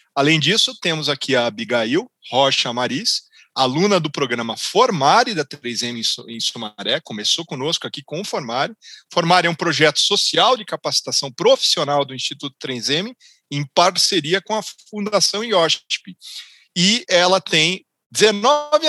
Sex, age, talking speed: male, 40-59, 135 wpm